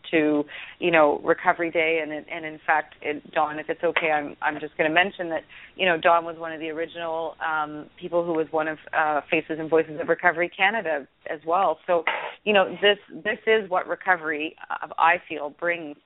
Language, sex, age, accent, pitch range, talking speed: English, female, 30-49, American, 155-175 Hz, 210 wpm